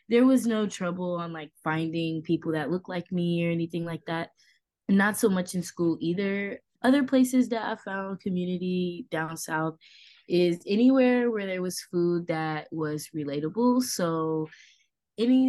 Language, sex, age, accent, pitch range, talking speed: English, female, 20-39, American, 155-195 Hz, 160 wpm